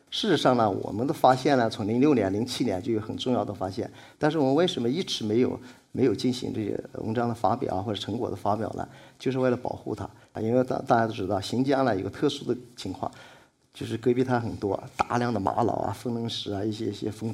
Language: Chinese